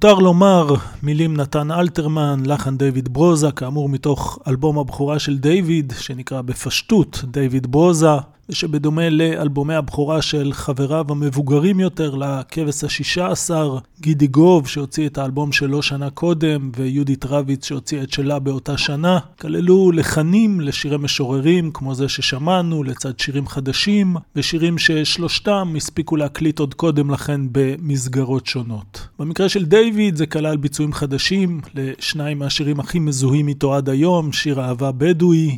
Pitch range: 135-160 Hz